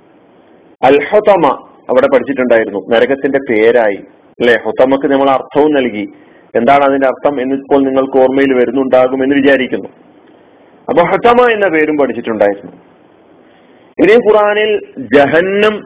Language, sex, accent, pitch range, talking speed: Malayalam, male, native, 125-165 Hz, 100 wpm